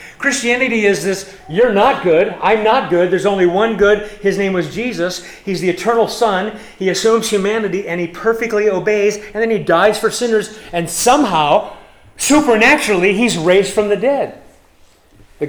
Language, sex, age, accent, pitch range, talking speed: English, male, 40-59, American, 140-215 Hz, 165 wpm